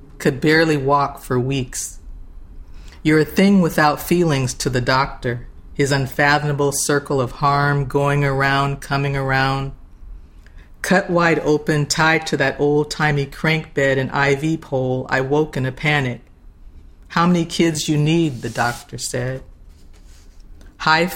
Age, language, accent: 40-59, English, American